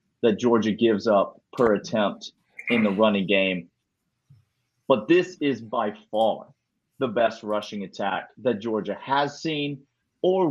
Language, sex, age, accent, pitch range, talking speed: English, male, 30-49, American, 105-140 Hz, 135 wpm